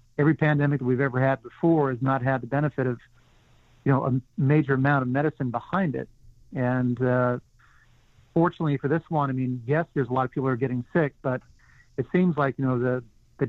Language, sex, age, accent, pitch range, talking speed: English, male, 50-69, American, 125-150 Hz, 215 wpm